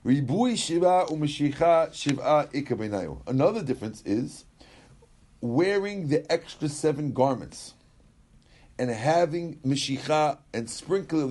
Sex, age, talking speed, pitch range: male, 50-69, 70 wpm, 115-150 Hz